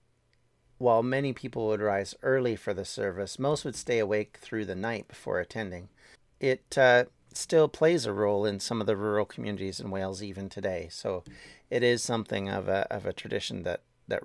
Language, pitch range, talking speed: English, 100-125 Hz, 185 wpm